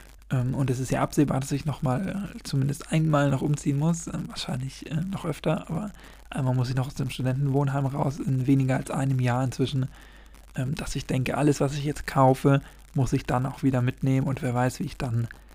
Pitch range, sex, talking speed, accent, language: 130-145 Hz, male, 200 wpm, German, German